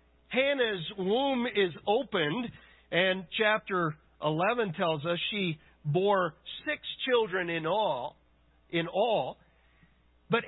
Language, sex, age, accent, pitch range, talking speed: English, male, 50-69, American, 155-225 Hz, 105 wpm